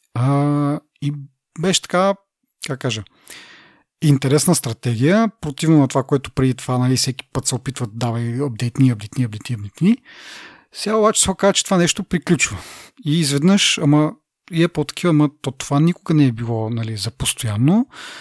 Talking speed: 160 wpm